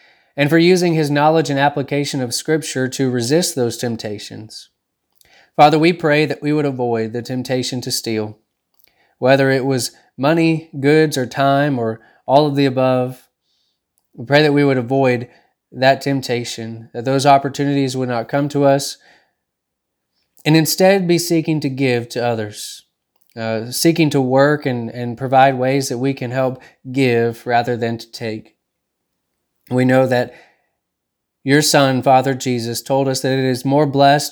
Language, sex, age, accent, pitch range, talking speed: English, male, 20-39, American, 120-145 Hz, 160 wpm